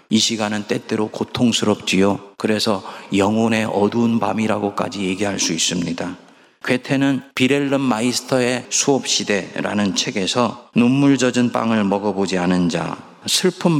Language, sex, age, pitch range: Korean, male, 40-59, 100-135 Hz